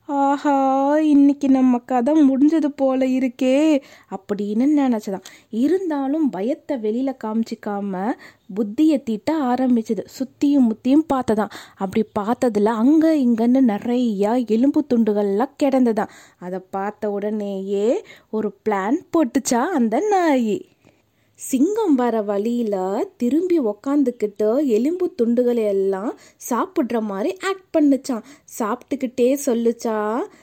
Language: Tamil